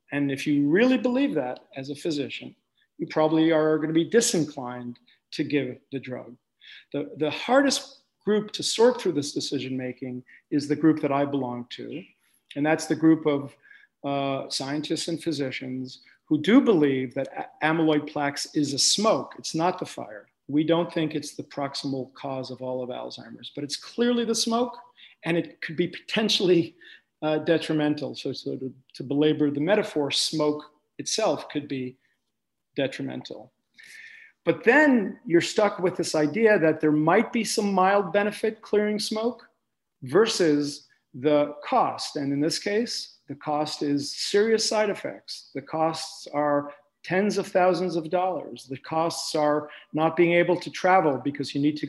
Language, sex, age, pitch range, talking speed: English, male, 40-59, 140-185 Hz, 165 wpm